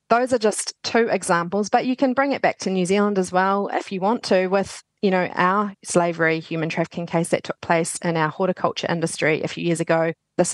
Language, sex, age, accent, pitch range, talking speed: English, female, 30-49, Australian, 165-200 Hz, 230 wpm